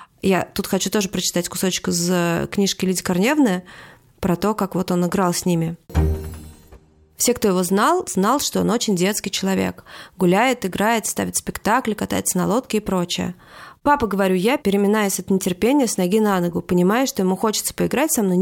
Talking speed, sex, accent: 175 wpm, female, native